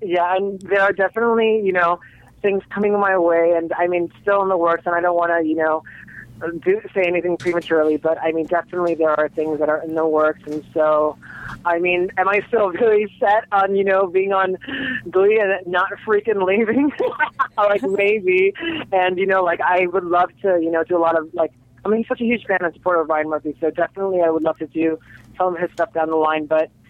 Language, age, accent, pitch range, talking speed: English, 30-49, American, 155-190 Hz, 230 wpm